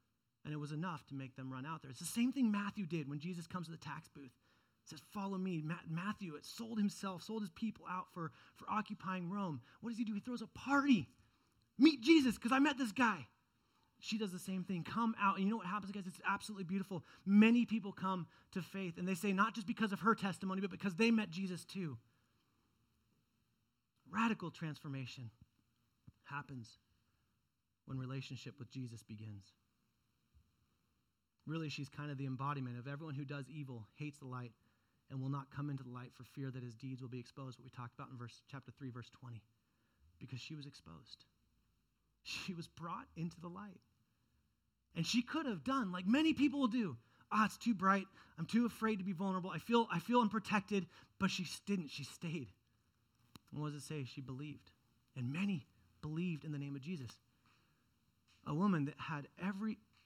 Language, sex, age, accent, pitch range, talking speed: English, male, 30-49, American, 125-200 Hz, 200 wpm